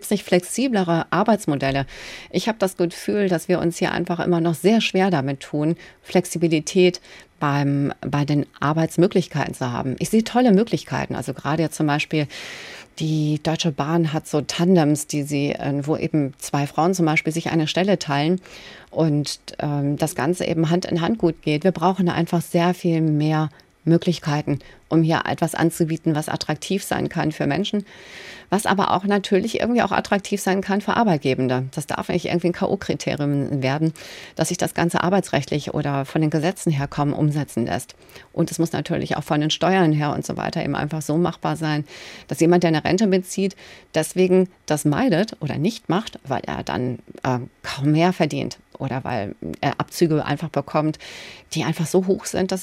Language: German